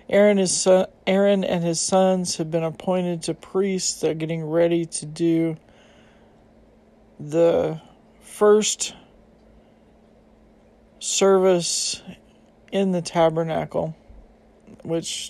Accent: American